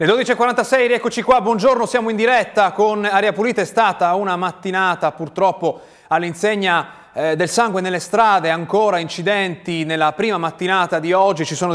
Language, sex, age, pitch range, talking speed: Italian, male, 30-49, 145-190 Hz, 155 wpm